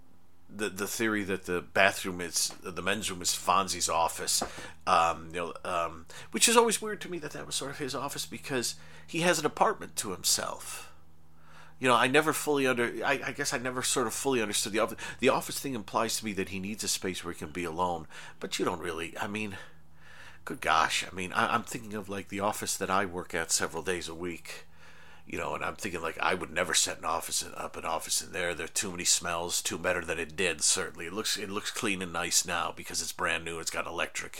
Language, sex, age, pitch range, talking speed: English, male, 40-59, 85-110 Hz, 240 wpm